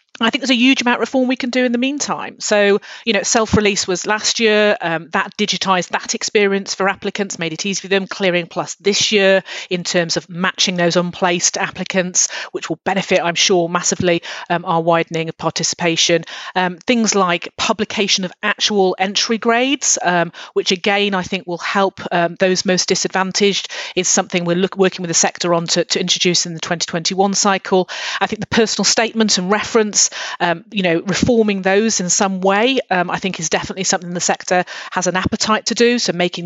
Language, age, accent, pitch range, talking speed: English, 40-59, British, 175-210 Hz, 195 wpm